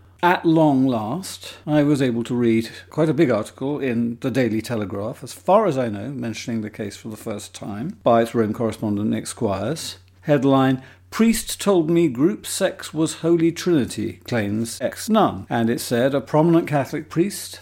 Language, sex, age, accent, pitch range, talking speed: English, male, 50-69, British, 115-165 Hz, 175 wpm